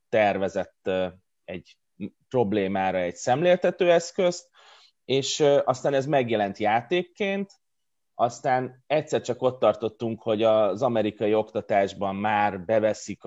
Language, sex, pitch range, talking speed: Hungarian, male, 105-135 Hz, 100 wpm